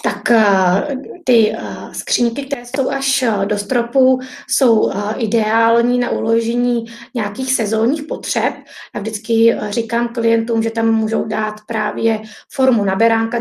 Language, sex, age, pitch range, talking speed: Czech, female, 20-39, 215-235 Hz, 115 wpm